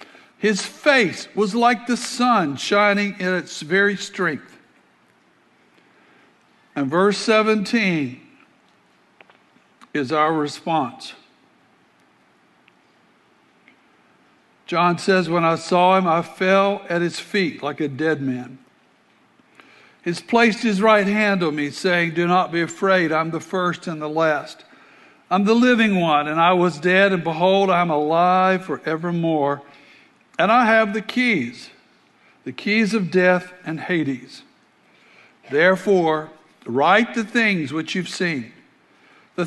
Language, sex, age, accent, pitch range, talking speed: English, male, 60-79, American, 165-205 Hz, 125 wpm